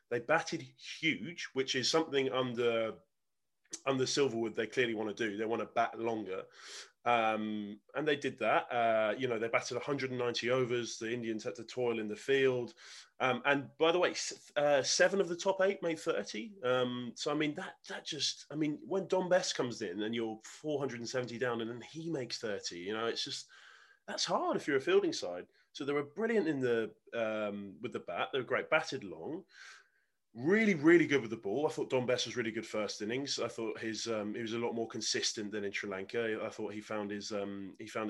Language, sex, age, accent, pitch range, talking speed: English, male, 20-39, British, 110-145 Hz, 220 wpm